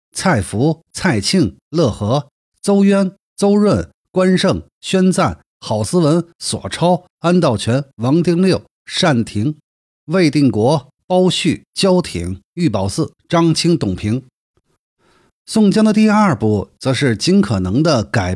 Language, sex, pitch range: Chinese, male, 115-180 Hz